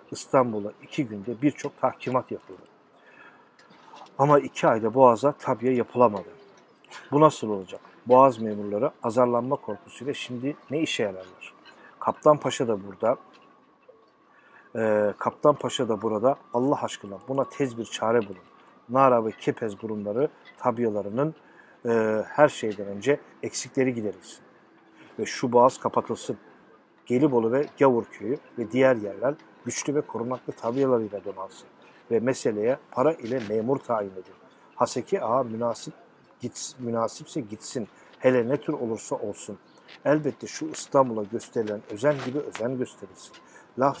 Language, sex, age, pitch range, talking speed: Turkish, male, 50-69, 110-140 Hz, 125 wpm